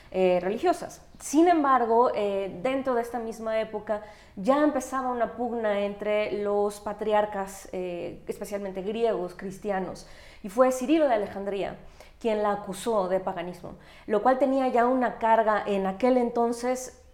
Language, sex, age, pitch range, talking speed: Spanish, female, 20-39, 200-250 Hz, 140 wpm